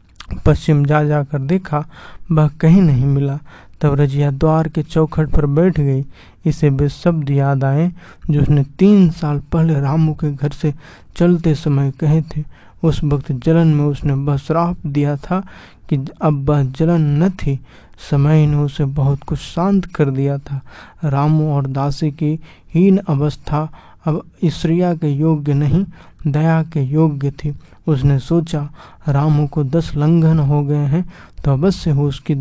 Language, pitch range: Hindi, 145-160 Hz